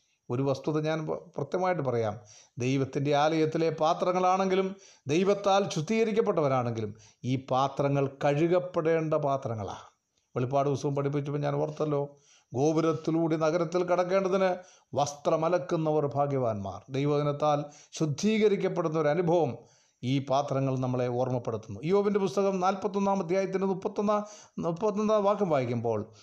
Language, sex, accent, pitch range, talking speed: Malayalam, male, native, 135-185 Hz, 90 wpm